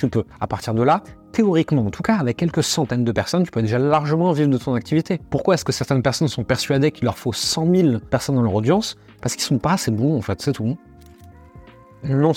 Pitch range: 115-140 Hz